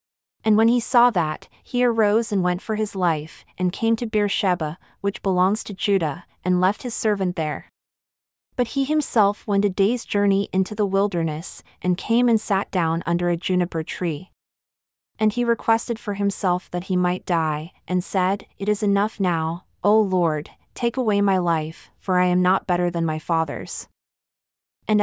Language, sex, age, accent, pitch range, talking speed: English, female, 30-49, American, 175-215 Hz, 175 wpm